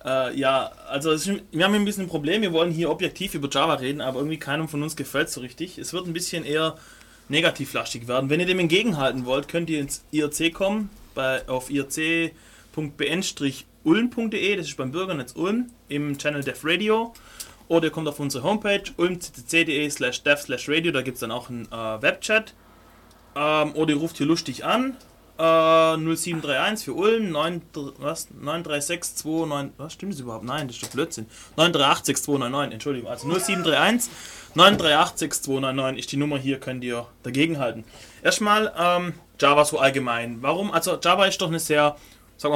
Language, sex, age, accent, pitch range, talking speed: German, male, 30-49, German, 130-170 Hz, 170 wpm